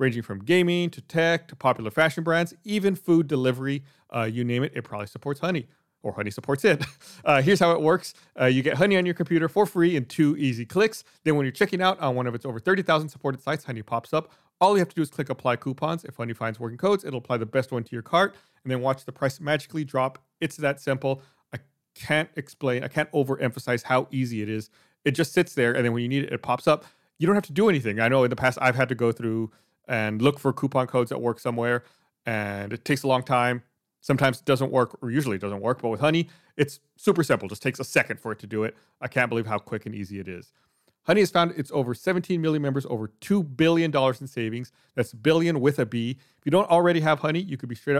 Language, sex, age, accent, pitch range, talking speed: English, male, 30-49, American, 120-160 Hz, 255 wpm